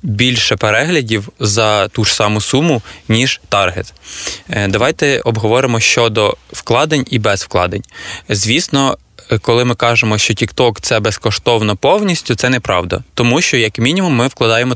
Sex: male